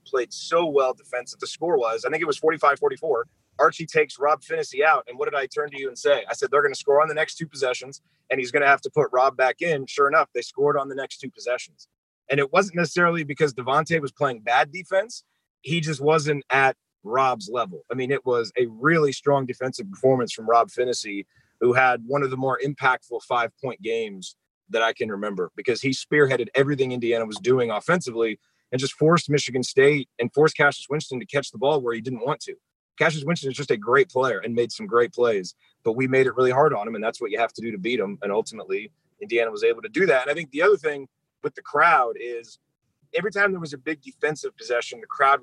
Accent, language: American, English